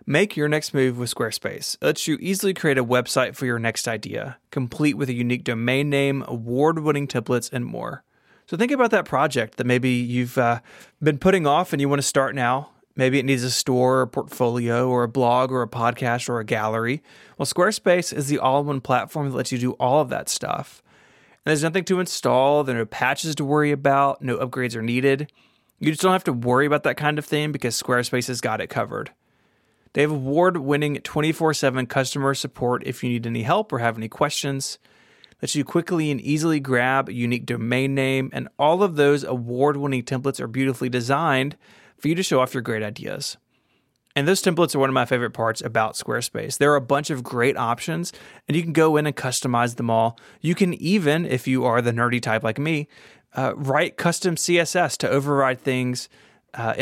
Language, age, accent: English, 30-49, American